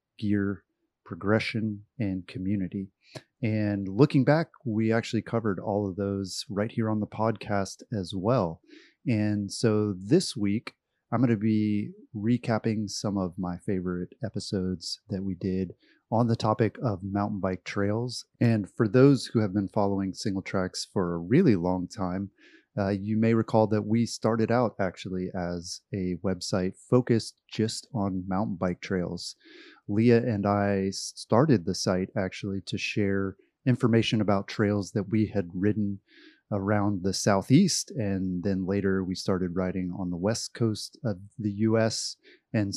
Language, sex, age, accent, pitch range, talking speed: English, male, 30-49, American, 95-115 Hz, 155 wpm